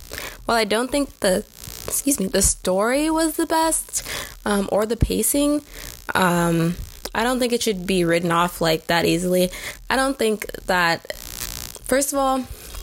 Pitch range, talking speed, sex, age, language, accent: 175-225 Hz, 165 wpm, female, 20-39, English, American